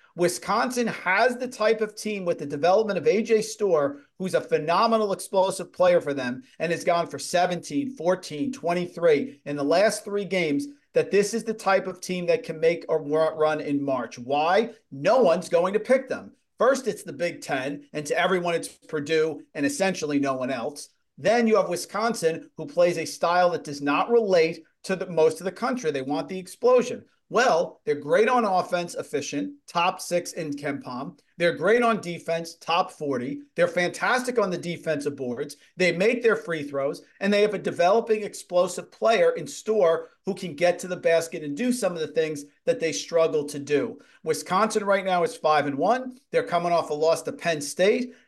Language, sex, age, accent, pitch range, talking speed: English, male, 40-59, American, 160-215 Hz, 195 wpm